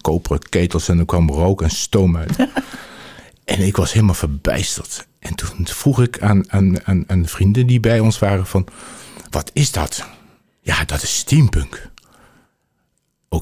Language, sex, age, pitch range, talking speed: Dutch, male, 50-69, 90-120 Hz, 160 wpm